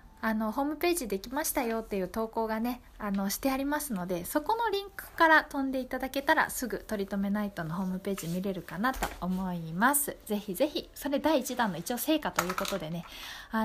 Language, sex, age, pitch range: Japanese, female, 20-39, 195-280 Hz